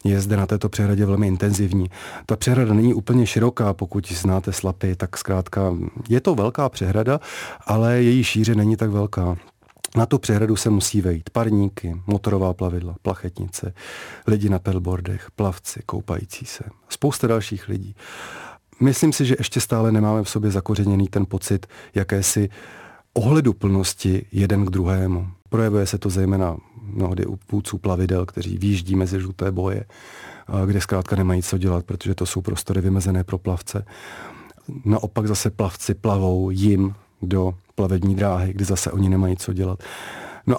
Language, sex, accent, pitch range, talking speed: Czech, male, native, 95-110 Hz, 155 wpm